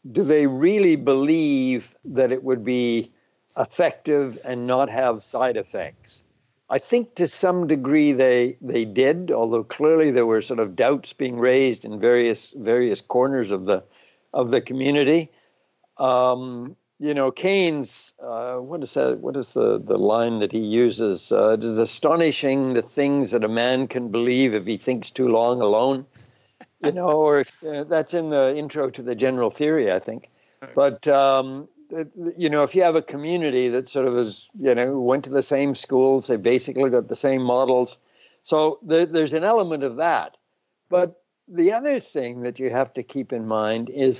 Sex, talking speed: male, 180 wpm